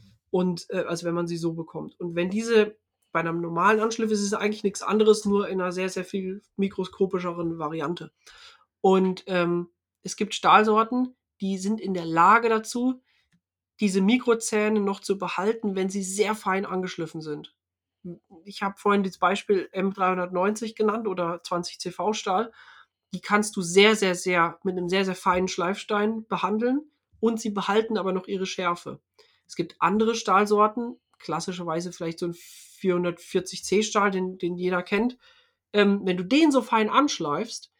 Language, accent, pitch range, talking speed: German, German, 175-215 Hz, 160 wpm